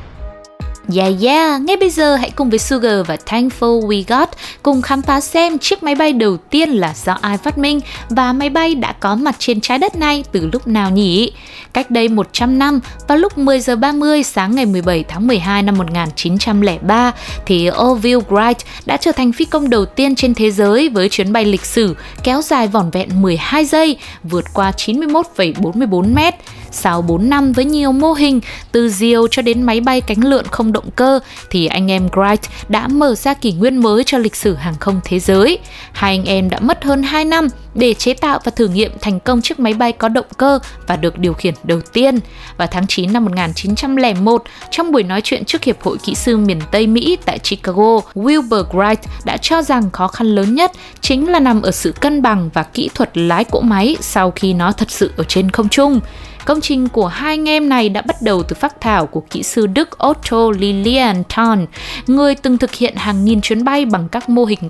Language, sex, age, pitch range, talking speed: Vietnamese, female, 20-39, 195-270 Hz, 210 wpm